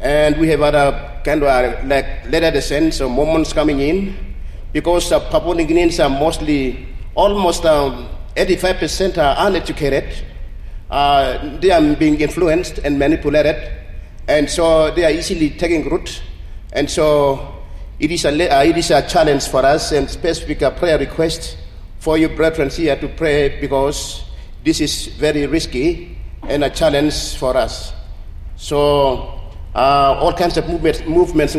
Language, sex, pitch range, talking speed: English, male, 140-170 Hz, 145 wpm